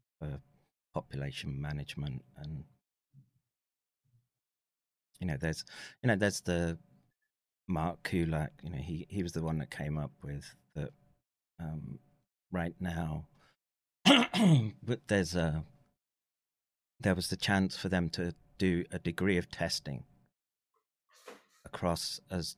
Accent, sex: British, male